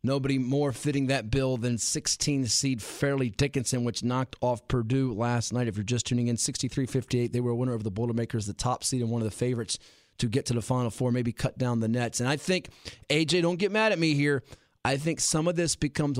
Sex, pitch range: male, 120-150 Hz